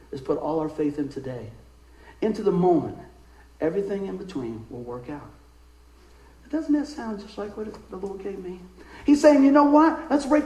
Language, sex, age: English, male, 50-69